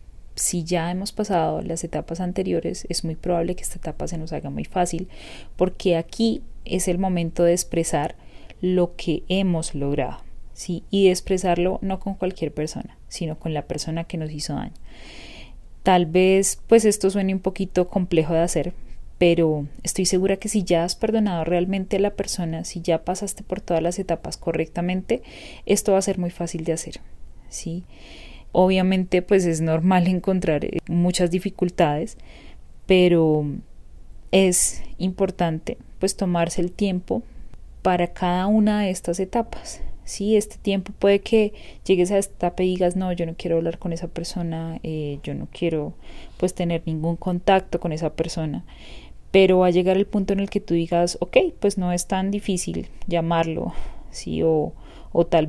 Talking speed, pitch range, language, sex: 170 wpm, 165-190 Hz, Spanish, female